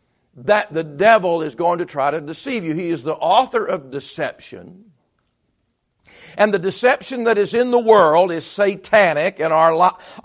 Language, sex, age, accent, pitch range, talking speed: English, male, 50-69, American, 200-250 Hz, 170 wpm